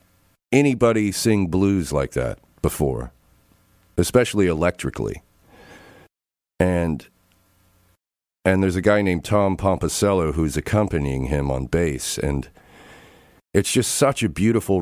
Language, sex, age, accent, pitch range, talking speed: English, male, 50-69, American, 70-90 Hz, 110 wpm